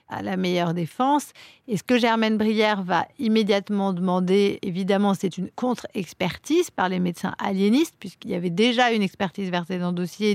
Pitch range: 175-225 Hz